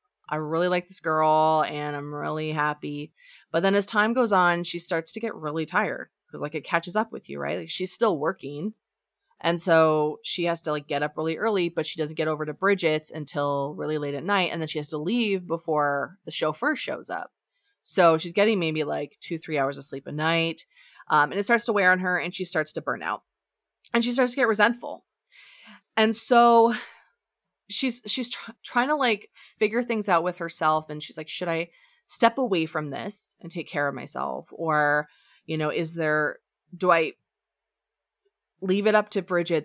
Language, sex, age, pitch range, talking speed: English, female, 20-39, 155-210 Hz, 205 wpm